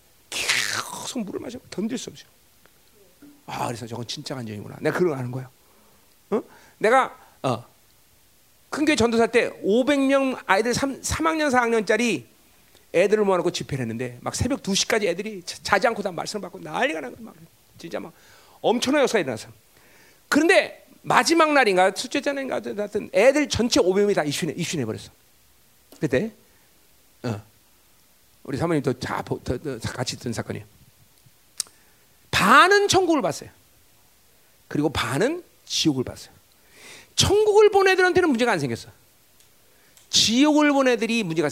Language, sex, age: Korean, male, 40-59